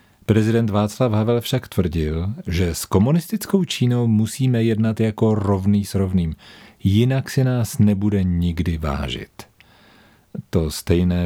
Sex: male